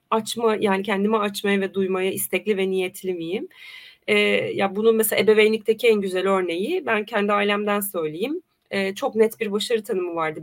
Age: 30-49